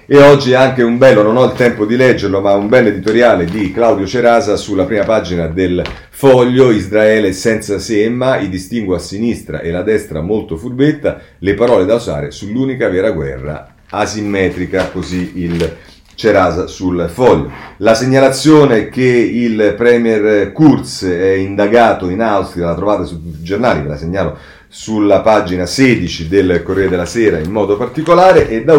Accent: native